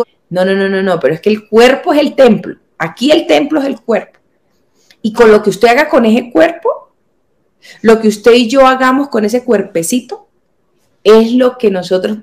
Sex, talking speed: female, 200 wpm